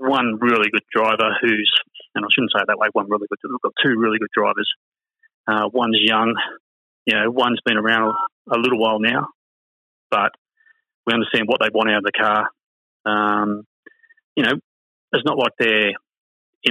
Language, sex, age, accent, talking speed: English, male, 30-49, Australian, 180 wpm